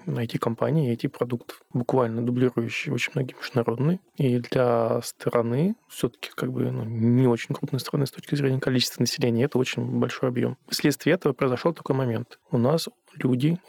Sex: male